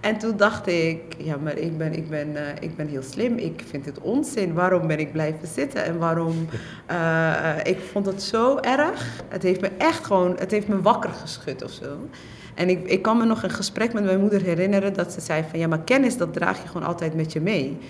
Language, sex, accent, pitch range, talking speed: Dutch, female, Dutch, 155-190 Hz, 240 wpm